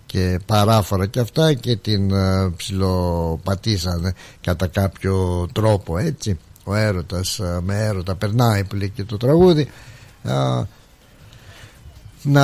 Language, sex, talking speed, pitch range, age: Greek, male, 120 wpm, 95-125 Hz, 60-79